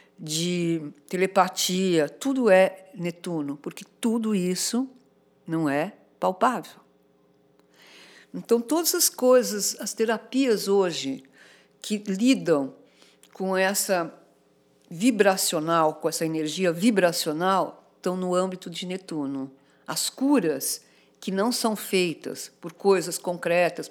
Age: 50-69